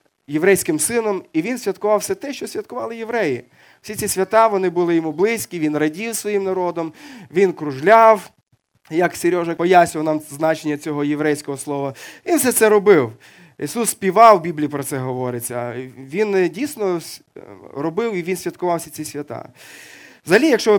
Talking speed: 155 wpm